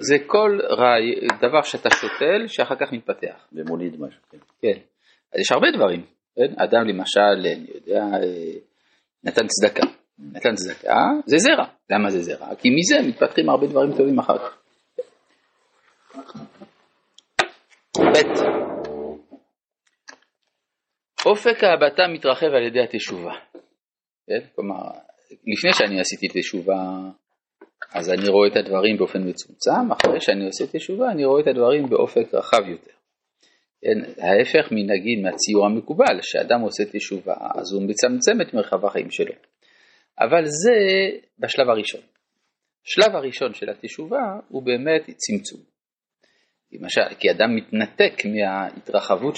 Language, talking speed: Hebrew, 110 wpm